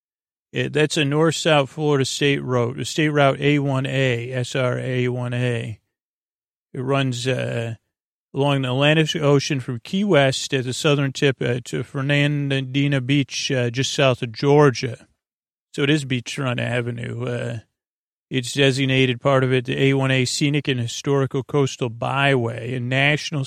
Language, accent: English, American